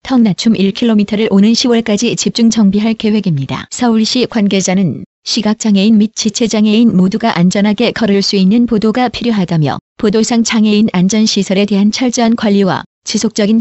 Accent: native